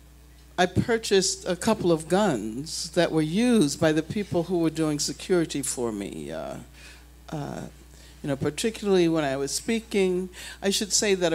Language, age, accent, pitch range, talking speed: English, 60-79, American, 140-195 Hz, 165 wpm